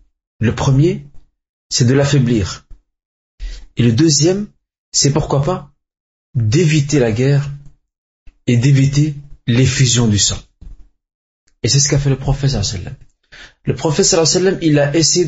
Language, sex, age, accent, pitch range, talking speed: French, male, 30-49, French, 115-145 Hz, 145 wpm